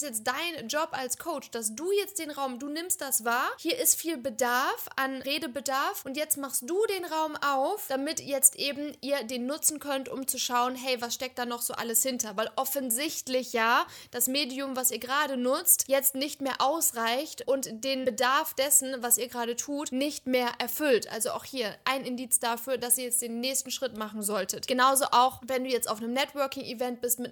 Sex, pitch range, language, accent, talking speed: female, 240-275 Hz, German, German, 205 wpm